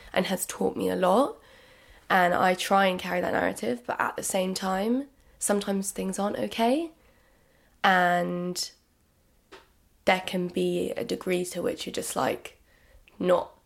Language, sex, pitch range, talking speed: English, female, 180-220 Hz, 150 wpm